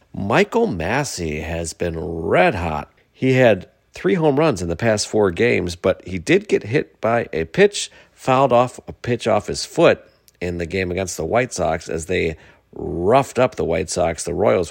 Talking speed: 190 wpm